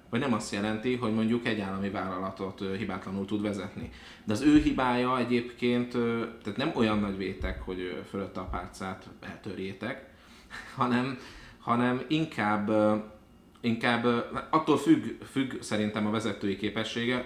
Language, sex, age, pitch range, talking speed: Hungarian, male, 30-49, 95-115 Hz, 130 wpm